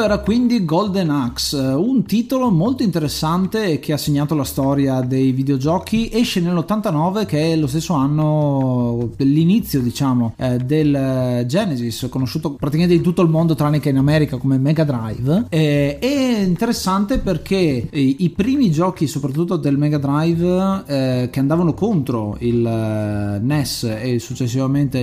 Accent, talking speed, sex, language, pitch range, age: native, 140 wpm, male, Italian, 130-165 Hz, 30-49